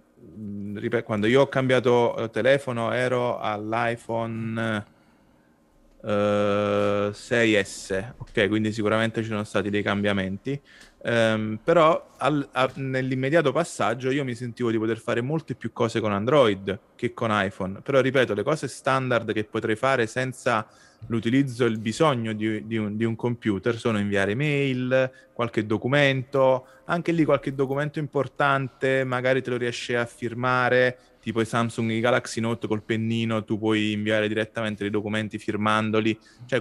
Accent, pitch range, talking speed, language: native, 110-130 Hz, 145 wpm, Italian